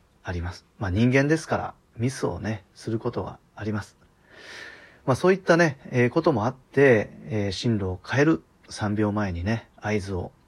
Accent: native